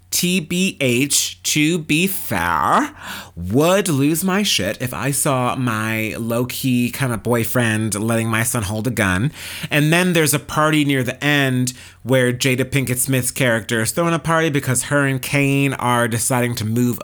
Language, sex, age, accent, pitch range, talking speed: English, male, 30-49, American, 115-145 Hz, 165 wpm